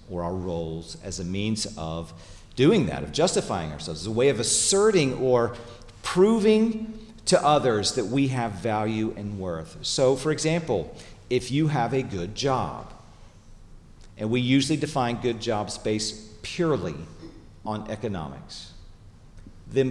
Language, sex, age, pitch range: English, male, 40-59, 95-130 Hz